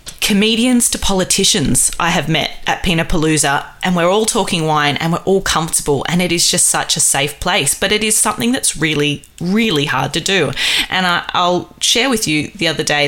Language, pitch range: English, 150-205 Hz